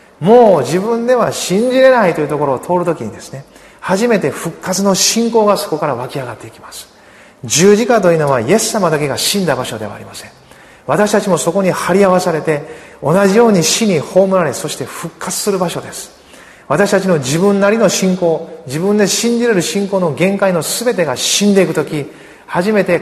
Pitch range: 145-195 Hz